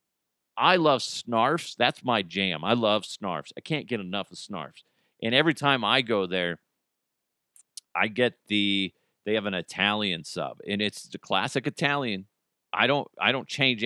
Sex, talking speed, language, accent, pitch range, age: male, 170 wpm, English, American, 105-145 Hz, 40-59